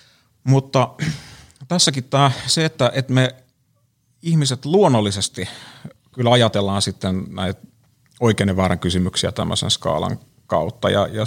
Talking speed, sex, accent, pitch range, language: 115 wpm, male, native, 100-125 Hz, Finnish